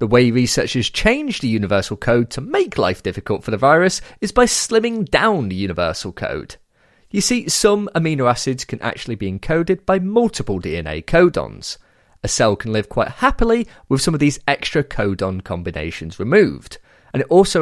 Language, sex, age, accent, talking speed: English, male, 30-49, British, 175 wpm